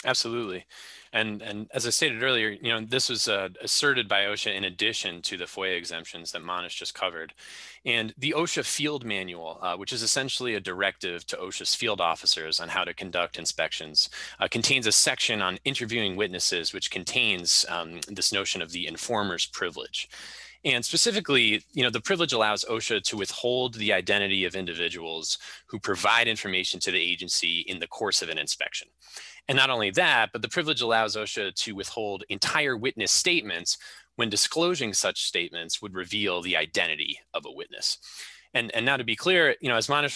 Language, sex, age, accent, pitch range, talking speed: English, male, 20-39, American, 100-145 Hz, 180 wpm